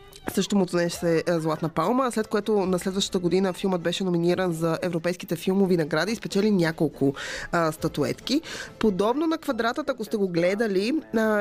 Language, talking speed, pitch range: Bulgarian, 165 wpm, 165-205 Hz